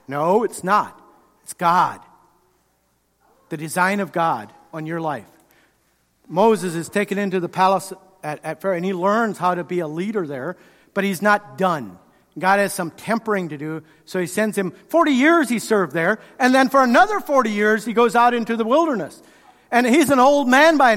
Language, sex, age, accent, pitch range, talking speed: English, male, 50-69, American, 180-225 Hz, 190 wpm